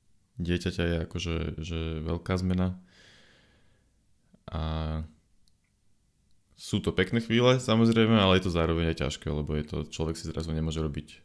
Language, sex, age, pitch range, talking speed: Slovak, male, 20-39, 80-90 Hz, 140 wpm